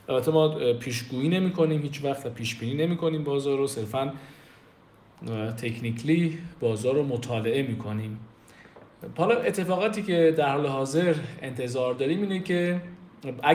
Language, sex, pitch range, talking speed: Persian, male, 125-165 Hz, 120 wpm